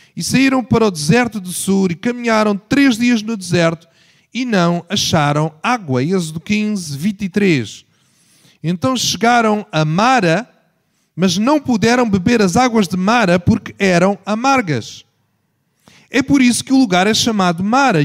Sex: male